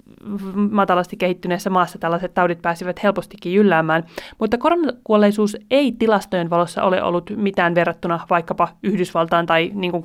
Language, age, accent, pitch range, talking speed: Finnish, 30-49, native, 175-215 Hz, 130 wpm